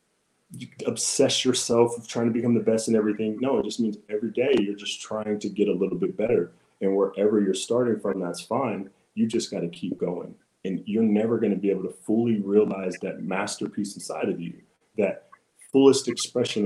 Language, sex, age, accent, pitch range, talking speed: English, male, 30-49, American, 95-115 Hz, 205 wpm